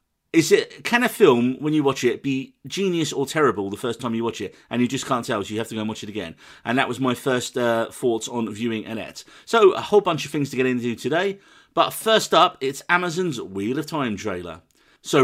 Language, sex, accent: English, male, British